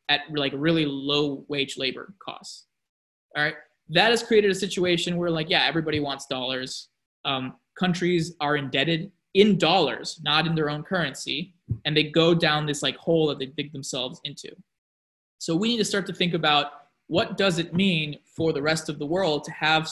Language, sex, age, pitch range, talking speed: English, male, 20-39, 145-170 Hz, 190 wpm